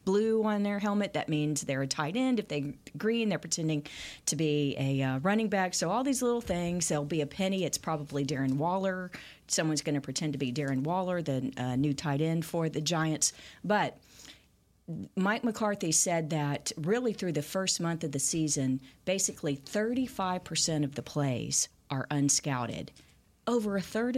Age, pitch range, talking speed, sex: 40-59, 145-190 Hz, 185 wpm, female